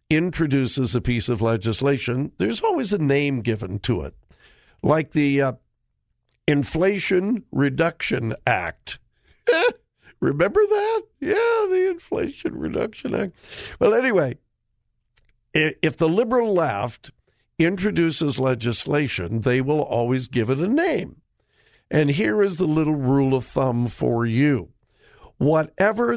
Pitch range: 120-165 Hz